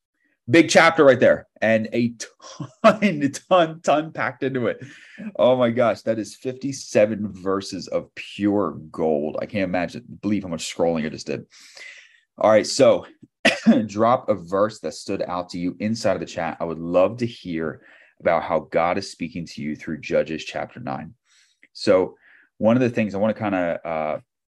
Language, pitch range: English, 85-115 Hz